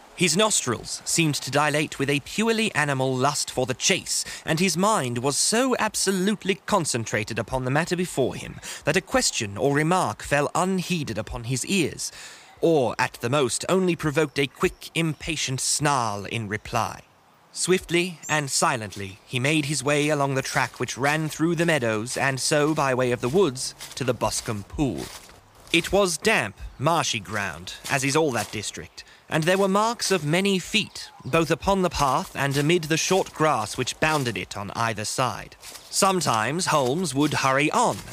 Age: 30-49